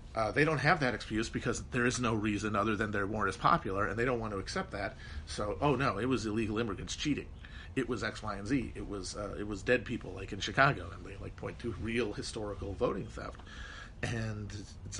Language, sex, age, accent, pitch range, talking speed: English, male, 40-59, American, 95-120 Hz, 235 wpm